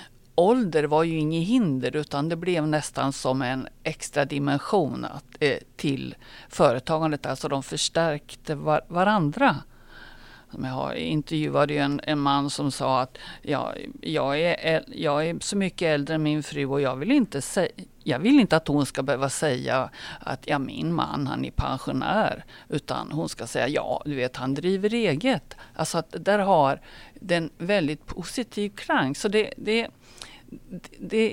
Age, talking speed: 50-69, 160 wpm